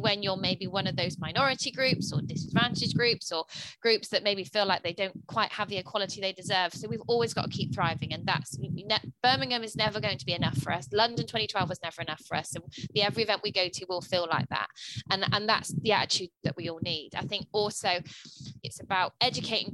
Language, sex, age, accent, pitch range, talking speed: English, female, 20-39, British, 165-210 Hz, 230 wpm